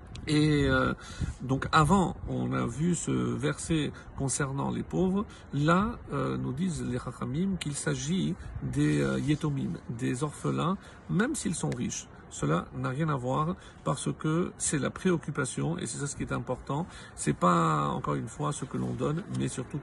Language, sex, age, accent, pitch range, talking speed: French, male, 50-69, French, 125-175 Hz, 170 wpm